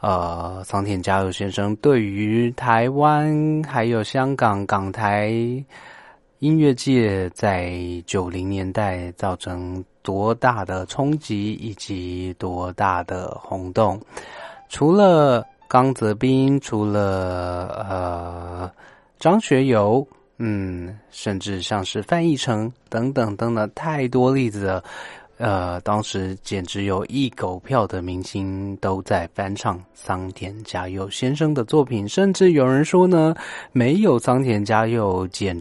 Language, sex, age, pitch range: Chinese, male, 30-49, 95-130 Hz